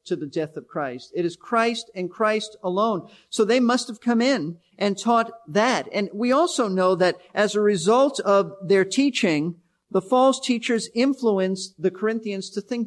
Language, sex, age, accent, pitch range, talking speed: English, male, 50-69, American, 180-220 Hz, 180 wpm